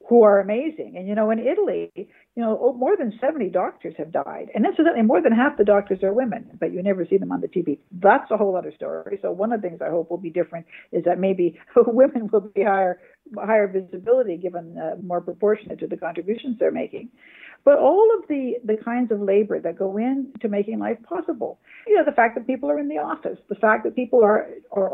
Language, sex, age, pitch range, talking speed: English, female, 60-79, 200-280 Hz, 230 wpm